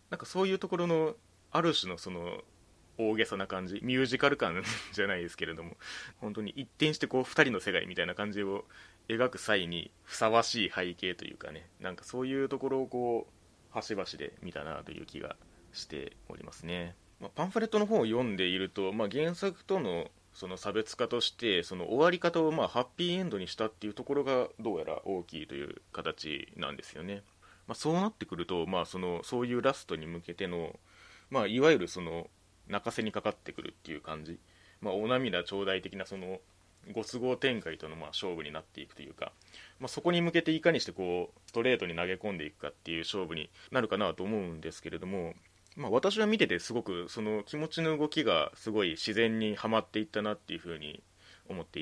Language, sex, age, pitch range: Japanese, male, 30-49, 90-135 Hz